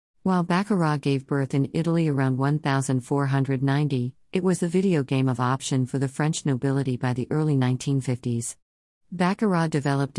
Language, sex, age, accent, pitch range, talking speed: English, female, 50-69, American, 130-150 Hz, 145 wpm